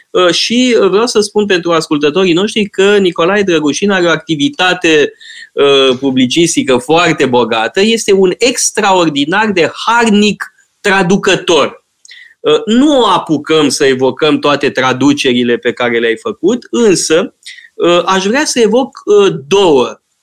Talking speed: 115 wpm